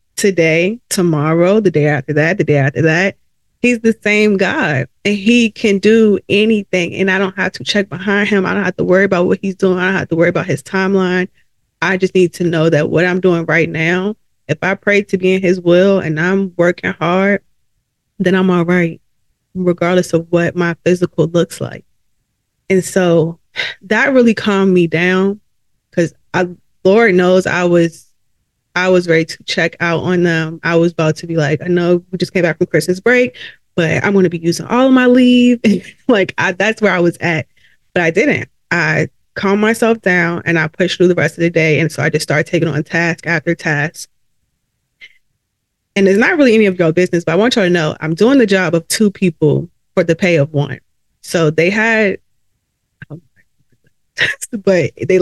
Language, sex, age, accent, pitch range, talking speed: English, female, 20-39, American, 160-195 Hz, 205 wpm